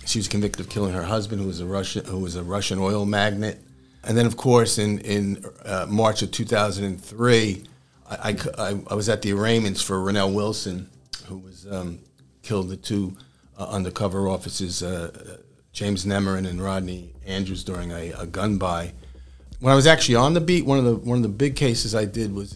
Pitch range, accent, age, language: 95-115 Hz, American, 50-69, English